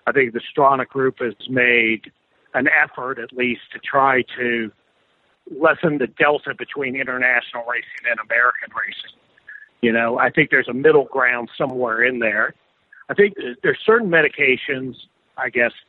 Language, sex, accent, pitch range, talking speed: English, male, American, 120-145 Hz, 155 wpm